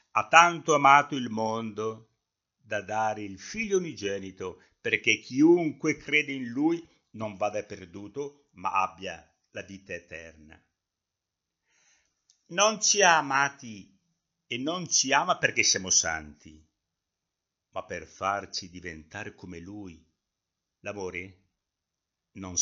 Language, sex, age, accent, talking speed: Italian, male, 60-79, native, 110 wpm